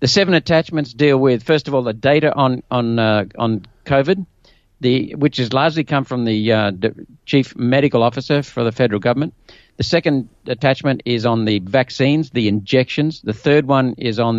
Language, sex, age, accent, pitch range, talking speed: English, male, 50-69, Australian, 115-150 Hz, 190 wpm